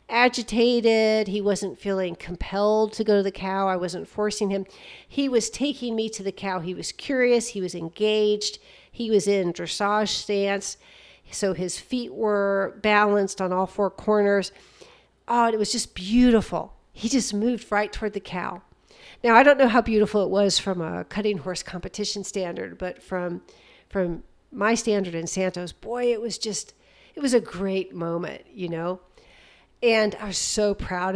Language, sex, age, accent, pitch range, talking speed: English, female, 50-69, American, 190-225 Hz, 175 wpm